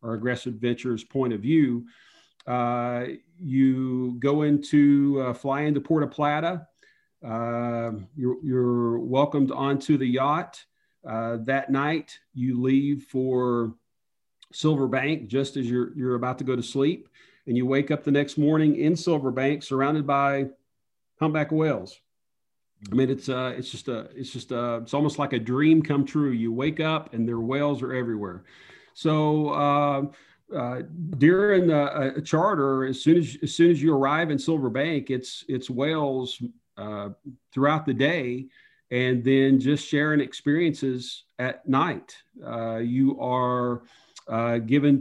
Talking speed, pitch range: 155 wpm, 125-145 Hz